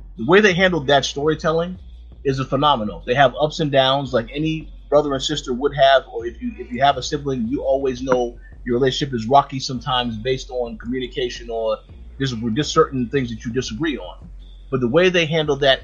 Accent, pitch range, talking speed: American, 120-145 Hz, 205 wpm